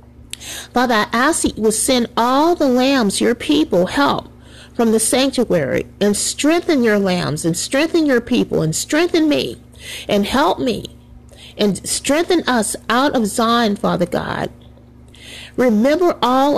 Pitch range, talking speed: 185-250 Hz, 145 wpm